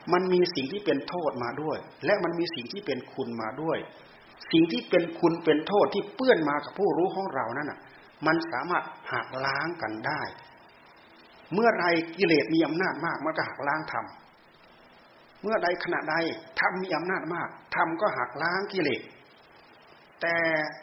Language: Thai